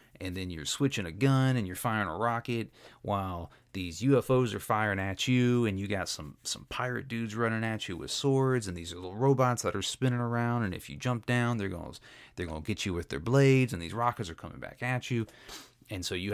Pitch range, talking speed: 90-120 Hz, 240 wpm